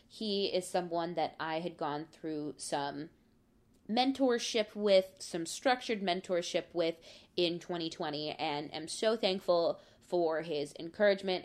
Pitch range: 170-245 Hz